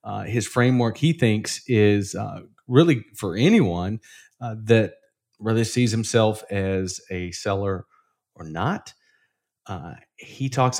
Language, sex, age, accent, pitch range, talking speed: English, male, 30-49, American, 100-125 Hz, 130 wpm